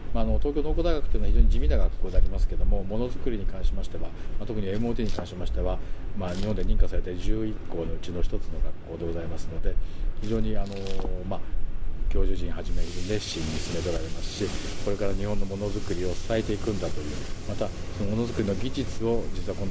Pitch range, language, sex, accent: 90-110 Hz, Japanese, male, native